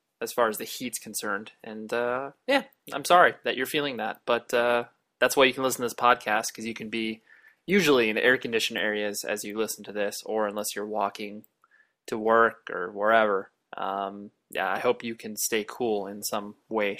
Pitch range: 105-130 Hz